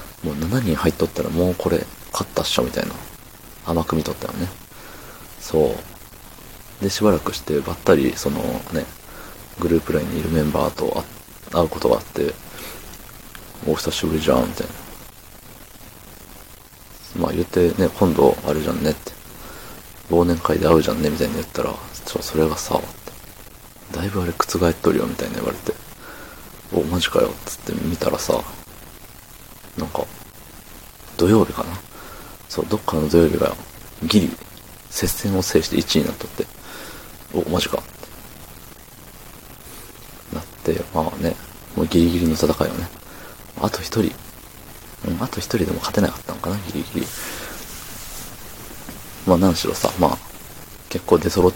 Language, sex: Japanese, male